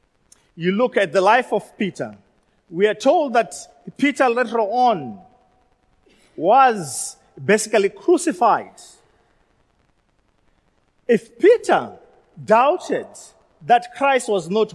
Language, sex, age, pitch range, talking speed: English, male, 40-59, 185-240 Hz, 100 wpm